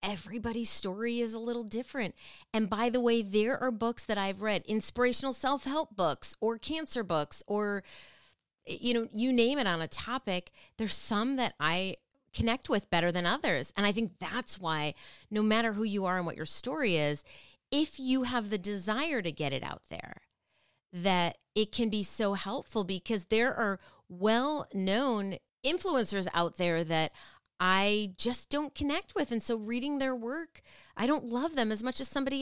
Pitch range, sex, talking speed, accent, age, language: 170-235 Hz, female, 180 wpm, American, 30-49, English